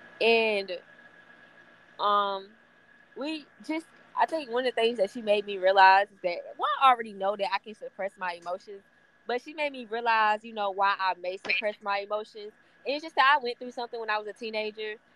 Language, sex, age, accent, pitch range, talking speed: English, female, 20-39, American, 200-240 Hz, 205 wpm